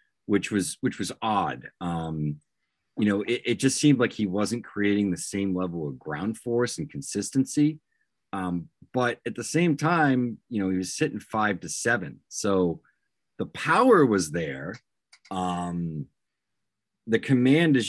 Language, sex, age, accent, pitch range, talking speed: English, male, 30-49, American, 85-115 Hz, 160 wpm